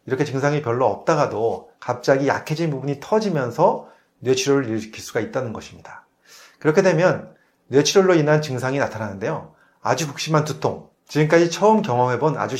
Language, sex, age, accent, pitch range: Korean, male, 30-49, native, 120-165 Hz